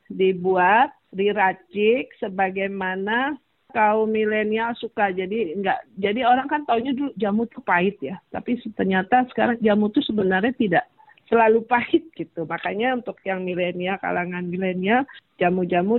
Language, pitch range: Indonesian, 180-235 Hz